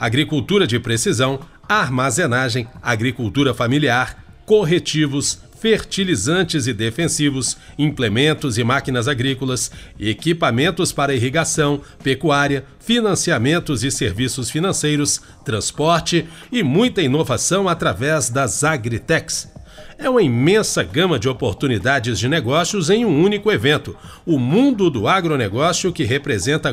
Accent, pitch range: Brazilian, 130-175 Hz